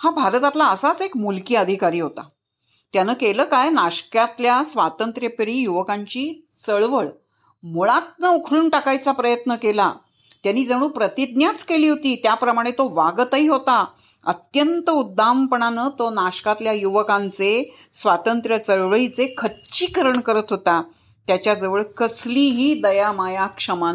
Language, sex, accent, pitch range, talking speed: Marathi, female, native, 185-270 Hz, 105 wpm